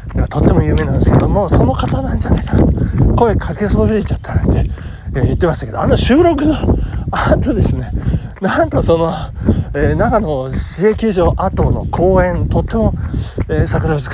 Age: 40-59